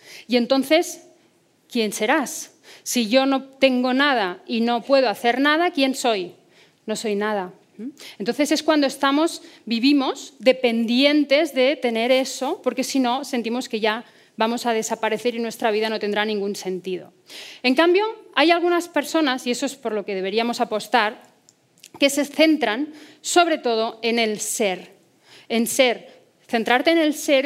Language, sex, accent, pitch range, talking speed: Spanish, female, Spanish, 215-275 Hz, 155 wpm